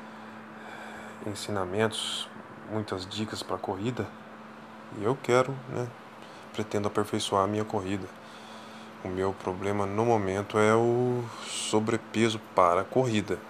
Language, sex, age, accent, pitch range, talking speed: Portuguese, male, 20-39, Brazilian, 100-110 Hz, 105 wpm